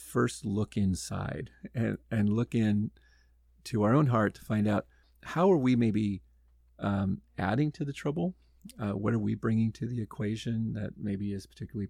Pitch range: 85-115 Hz